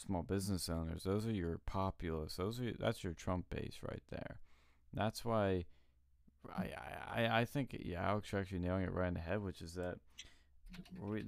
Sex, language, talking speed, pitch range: male, English, 195 wpm, 80-100 Hz